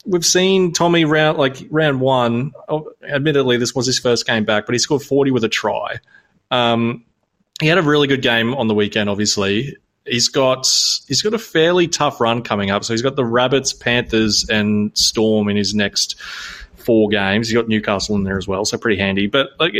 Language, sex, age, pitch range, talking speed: English, male, 20-39, 110-140 Hz, 205 wpm